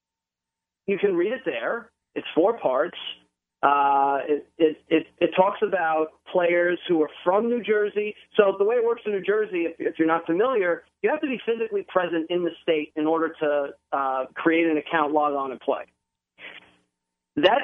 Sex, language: male, English